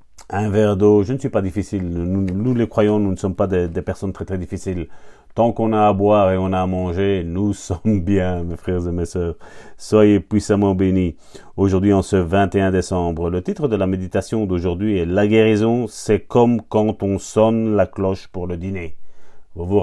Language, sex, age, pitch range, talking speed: French, male, 40-59, 95-110 Hz, 210 wpm